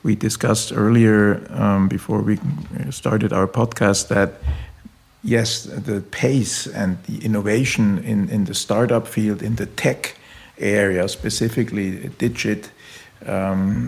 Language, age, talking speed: German, 50-69, 120 wpm